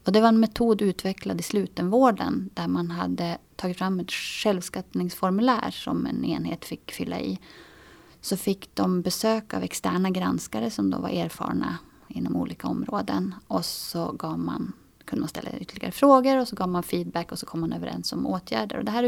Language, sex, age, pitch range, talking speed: Swedish, female, 30-49, 170-225 Hz, 185 wpm